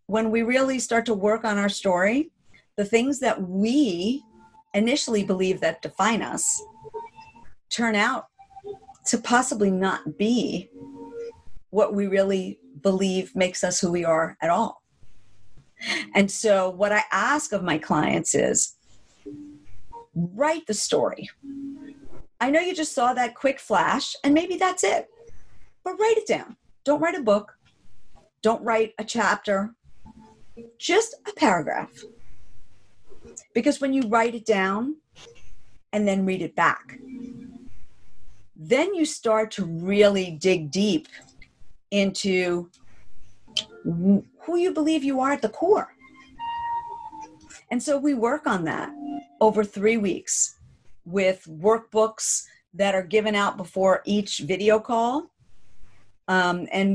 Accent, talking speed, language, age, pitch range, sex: American, 130 wpm, English, 40-59, 185-270 Hz, female